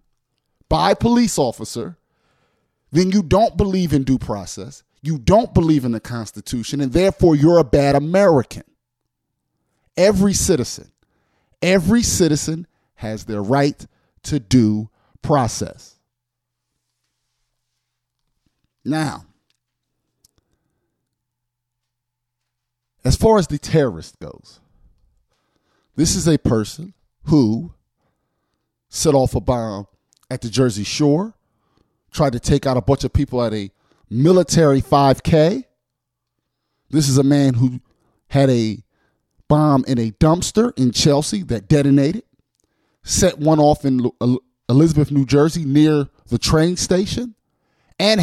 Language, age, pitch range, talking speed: English, 50-69, 125-160 Hz, 115 wpm